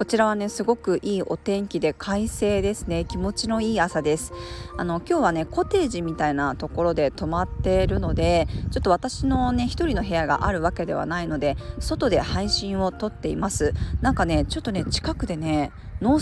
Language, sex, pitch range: Japanese, female, 150-195 Hz